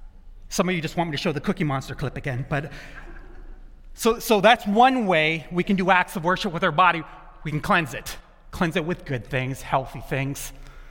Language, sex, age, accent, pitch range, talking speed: English, male, 30-49, American, 145-185 Hz, 215 wpm